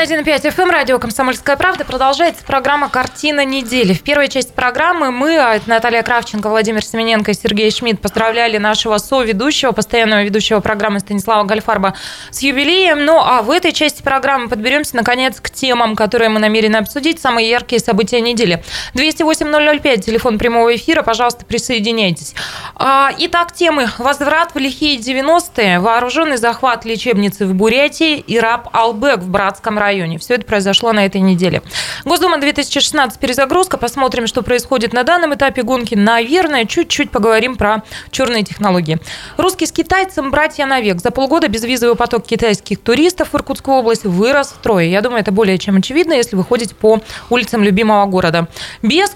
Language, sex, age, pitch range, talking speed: Russian, female, 20-39, 215-285 Hz, 150 wpm